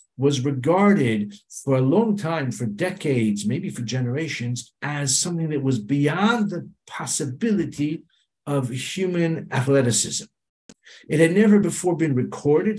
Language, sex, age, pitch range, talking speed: English, male, 60-79, 130-185 Hz, 125 wpm